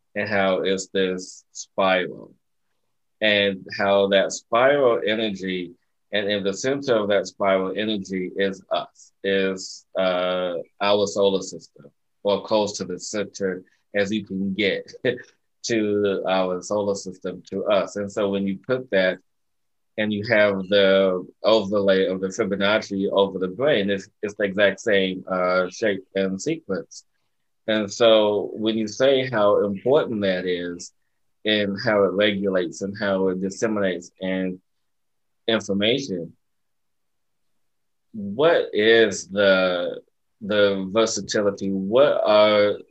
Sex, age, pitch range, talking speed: male, 20-39, 95-105 Hz, 130 wpm